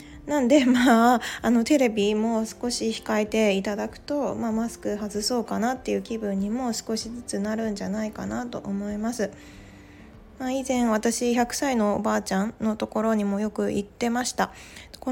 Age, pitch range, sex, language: 20-39, 200-250 Hz, female, Japanese